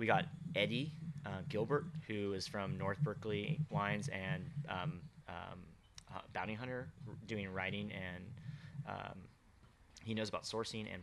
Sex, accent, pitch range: male, American, 100-125 Hz